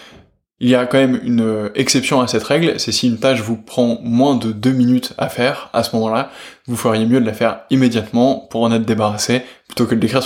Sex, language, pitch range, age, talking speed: male, French, 115-135 Hz, 20-39, 235 wpm